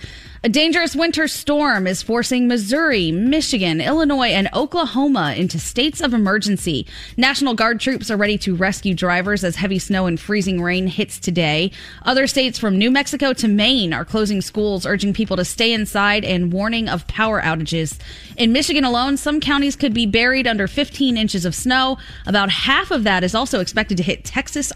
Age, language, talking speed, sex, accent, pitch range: 20-39, English, 180 wpm, female, American, 185-265 Hz